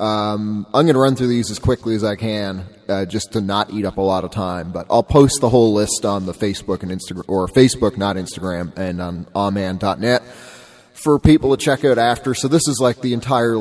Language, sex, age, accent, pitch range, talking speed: English, male, 30-49, American, 100-125 Hz, 230 wpm